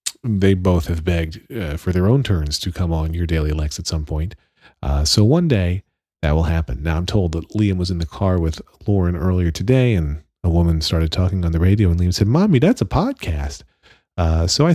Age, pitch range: 40-59, 80-110 Hz